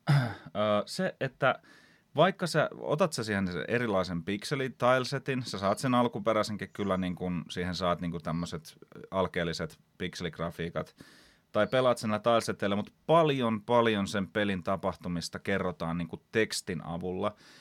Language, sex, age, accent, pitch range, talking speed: Finnish, male, 30-49, native, 85-110 Hz, 125 wpm